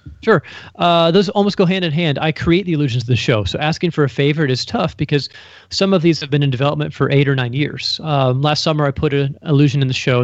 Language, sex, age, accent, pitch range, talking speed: English, male, 30-49, American, 125-155 Hz, 265 wpm